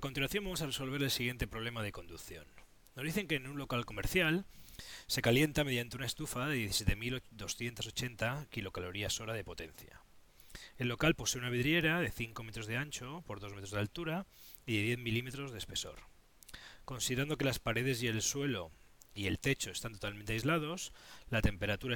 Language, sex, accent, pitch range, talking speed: Spanish, male, Spanish, 110-150 Hz, 170 wpm